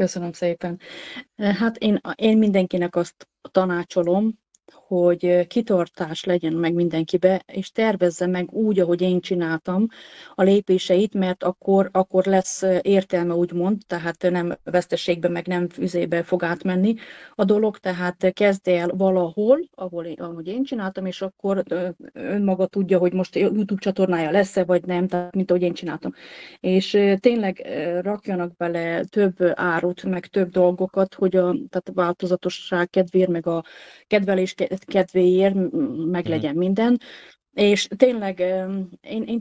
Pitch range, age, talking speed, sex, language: 180-210 Hz, 30-49, 135 wpm, female, Hungarian